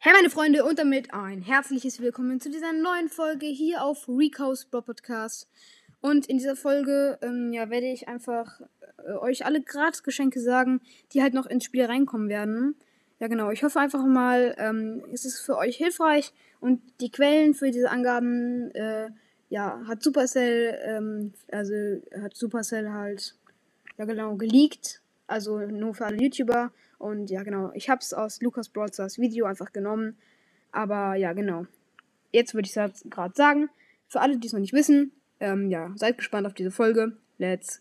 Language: German